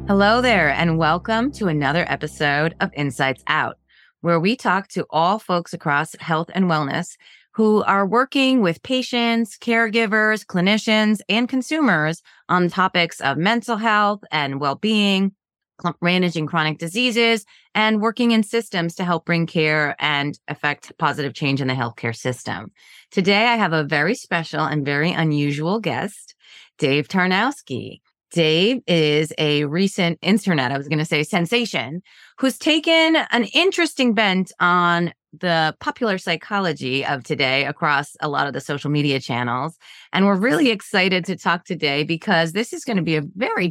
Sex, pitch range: female, 155-215 Hz